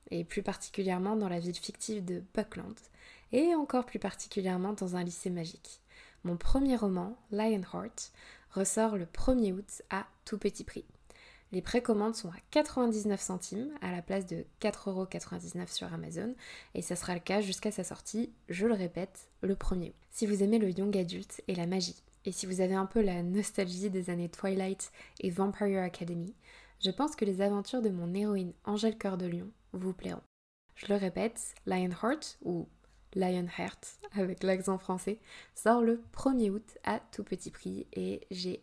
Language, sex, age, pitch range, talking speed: French, female, 20-39, 180-210 Hz, 175 wpm